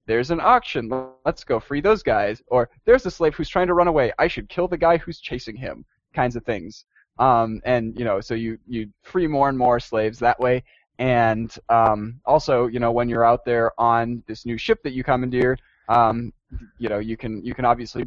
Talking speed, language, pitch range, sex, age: 220 wpm, English, 115-155 Hz, male, 10-29